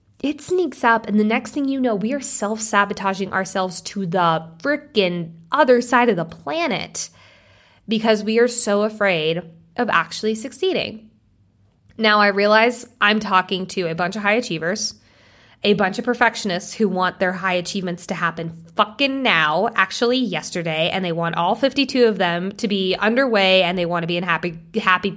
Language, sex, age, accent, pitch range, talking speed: English, female, 20-39, American, 180-245 Hz, 175 wpm